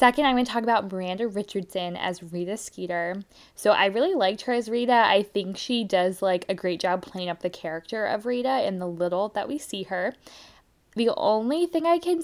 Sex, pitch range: female, 190-245 Hz